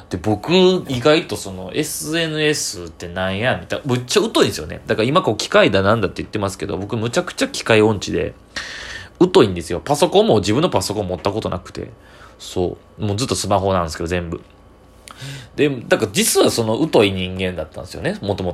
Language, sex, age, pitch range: Japanese, male, 20-39, 95-135 Hz